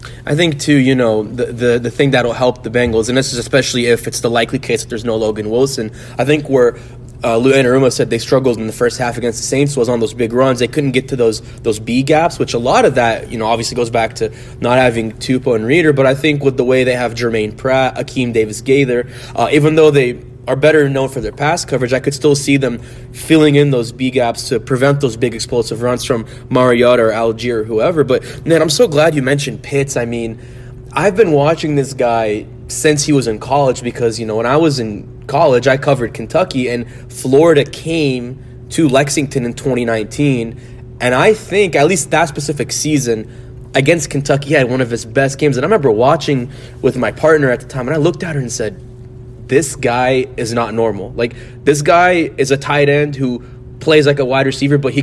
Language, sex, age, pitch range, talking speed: English, male, 20-39, 120-140 Hz, 230 wpm